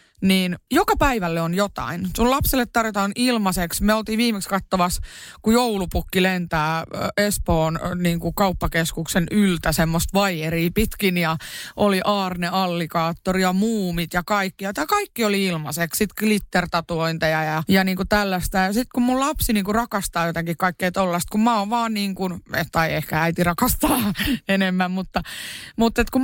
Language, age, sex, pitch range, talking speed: Finnish, 30-49, female, 175-225 Hz, 155 wpm